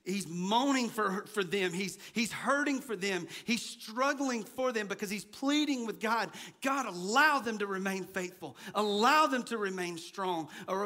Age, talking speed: 40-59, 165 wpm